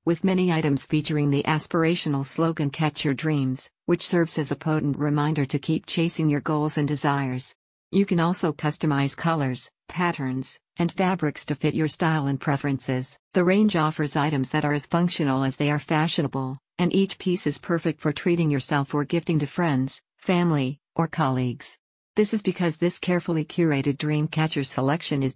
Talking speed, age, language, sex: 175 wpm, 50-69, English, female